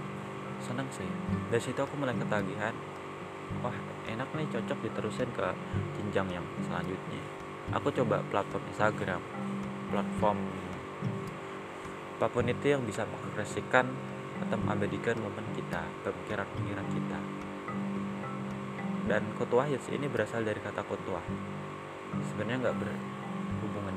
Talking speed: 110 wpm